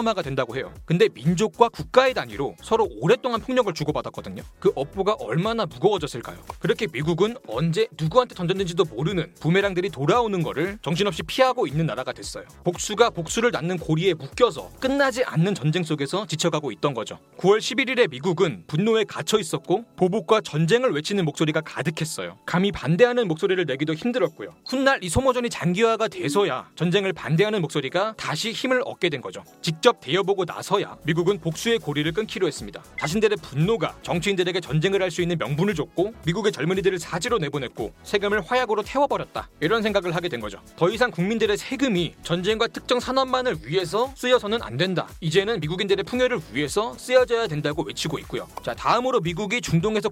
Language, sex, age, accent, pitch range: Korean, male, 30-49, native, 165-230 Hz